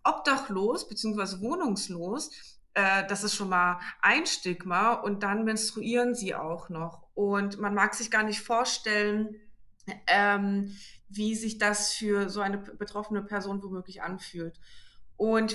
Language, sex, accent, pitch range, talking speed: German, female, German, 195-225 Hz, 135 wpm